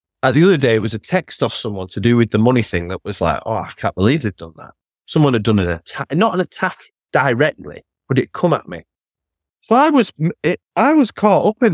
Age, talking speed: 30-49, 250 wpm